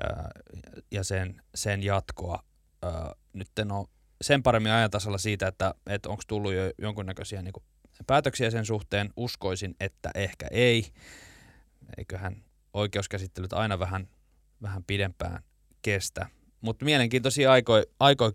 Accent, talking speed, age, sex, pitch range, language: native, 115 wpm, 20-39, male, 95-110 Hz, Finnish